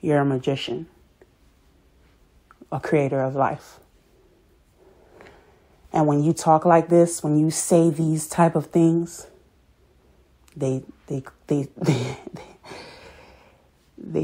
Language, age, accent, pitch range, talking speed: English, 30-49, American, 130-160 Hz, 95 wpm